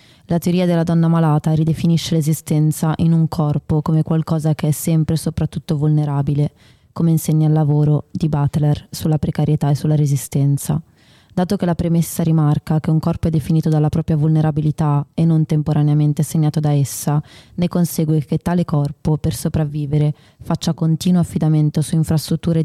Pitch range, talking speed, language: 150-165 Hz, 160 wpm, Italian